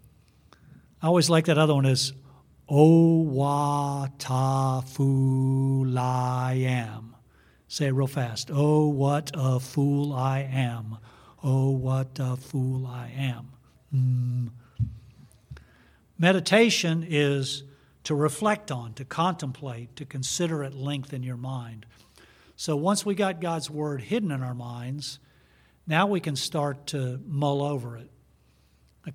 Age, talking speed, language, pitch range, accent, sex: 50-69, 130 wpm, English, 125-155 Hz, American, male